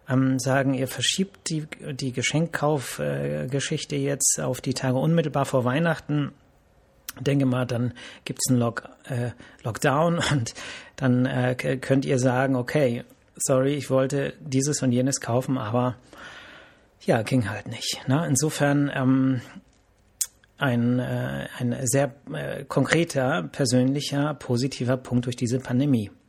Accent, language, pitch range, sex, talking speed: German, German, 125-155 Hz, male, 130 wpm